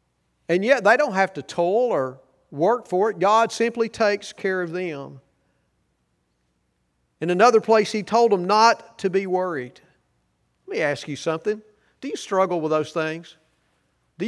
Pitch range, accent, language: 135-210 Hz, American, English